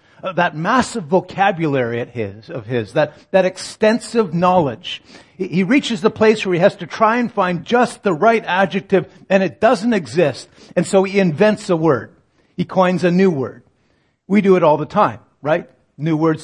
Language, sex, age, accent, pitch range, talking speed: English, male, 50-69, American, 155-210 Hz, 170 wpm